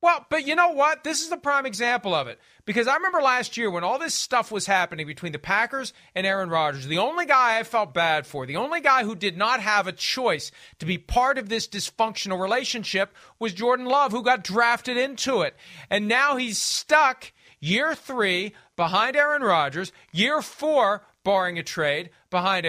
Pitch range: 180-260 Hz